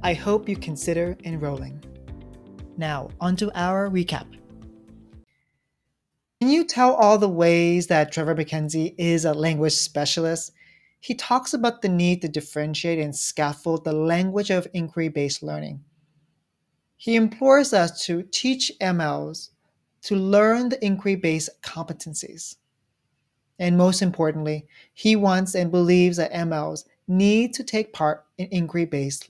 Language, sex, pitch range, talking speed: English, male, 150-200 Hz, 130 wpm